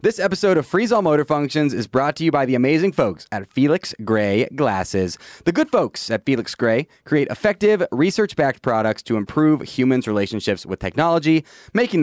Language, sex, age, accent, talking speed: English, male, 30-49, American, 180 wpm